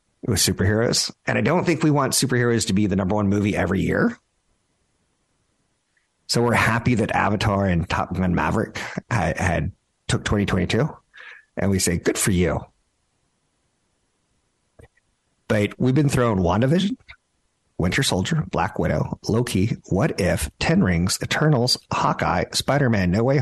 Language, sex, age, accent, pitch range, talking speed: English, male, 50-69, American, 90-120 Hz, 150 wpm